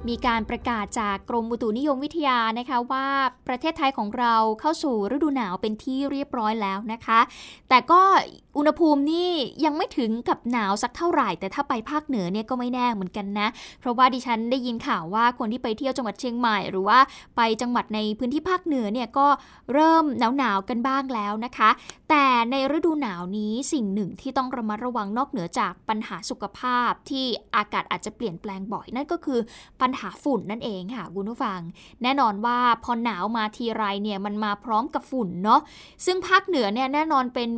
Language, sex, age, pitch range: Thai, female, 10-29, 220-275 Hz